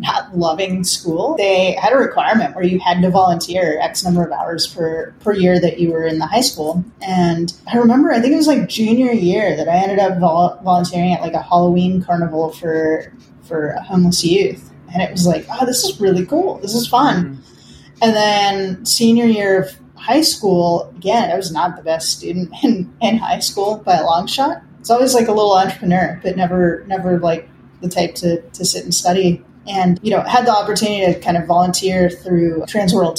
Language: English